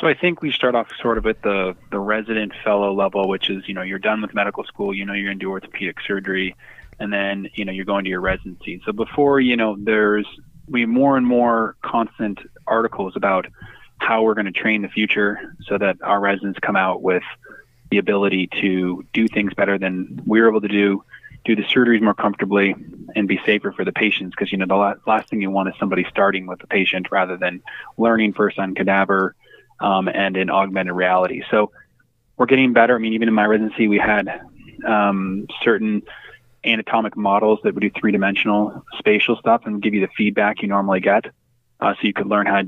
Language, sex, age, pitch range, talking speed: English, male, 20-39, 100-110 Hz, 210 wpm